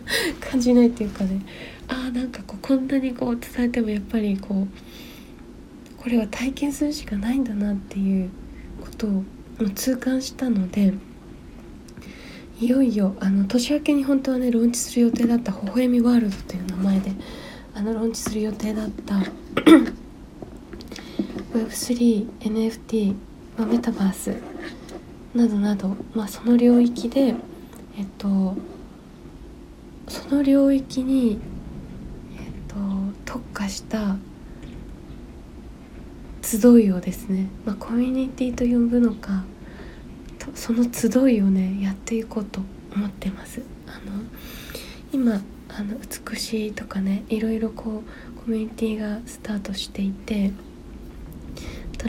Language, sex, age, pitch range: Japanese, female, 20-39, 200-245 Hz